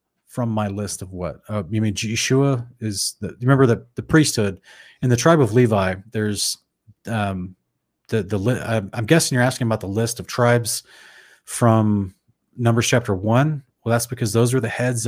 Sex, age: male, 30-49